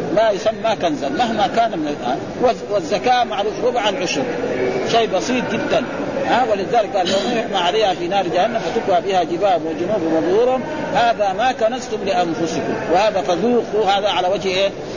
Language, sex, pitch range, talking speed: Arabic, male, 195-260 Hz, 145 wpm